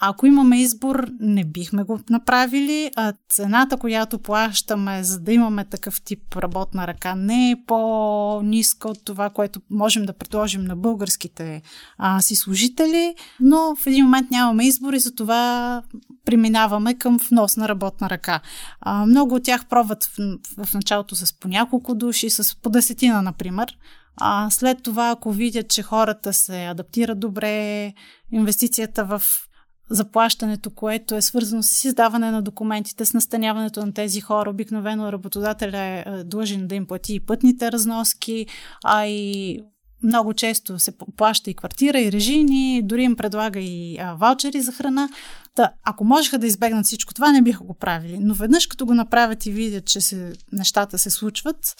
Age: 30-49